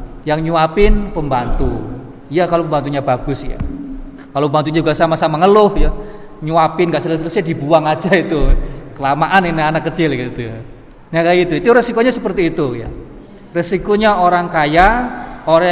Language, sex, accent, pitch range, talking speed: Indonesian, male, native, 150-190 Hz, 140 wpm